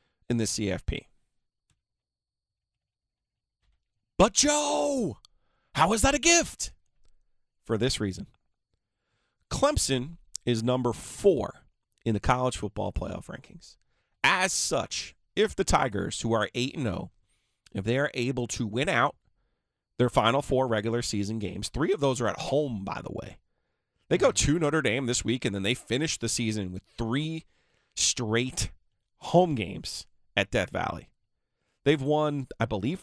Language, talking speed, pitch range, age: English, 145 wpm, 105-150 Hz, 30-49